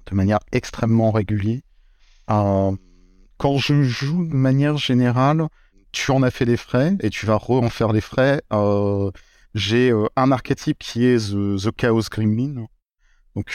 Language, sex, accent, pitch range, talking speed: French, male, French, 105-125 Hz, 160 wpm